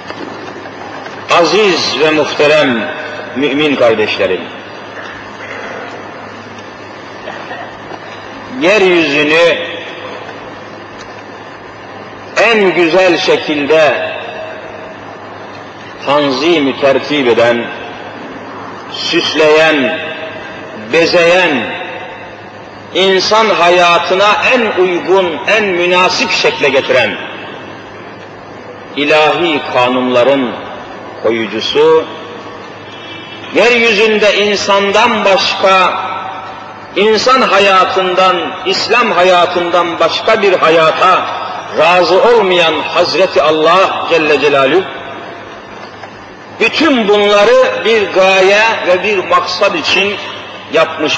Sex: male